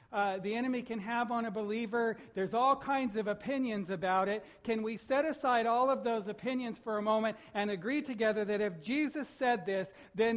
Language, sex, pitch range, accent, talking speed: English, male, 200-240 Hz, American, 205 wpm